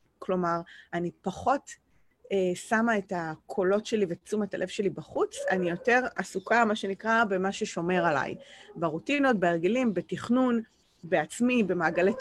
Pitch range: 180-240 Hz